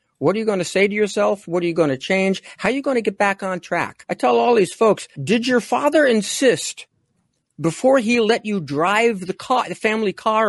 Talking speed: 240 wpm